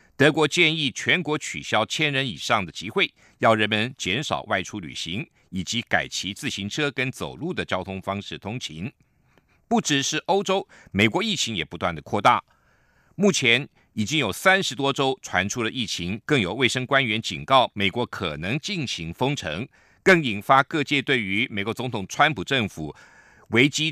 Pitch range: 100-145 Hz